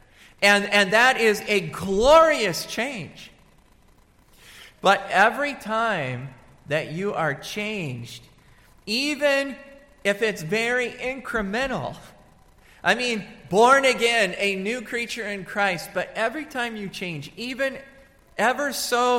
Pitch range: 140-210 Hz